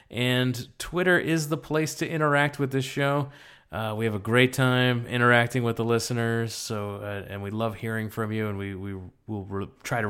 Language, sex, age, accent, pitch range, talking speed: English, male, 30-49, American, 100-120 Hz, 210 wpm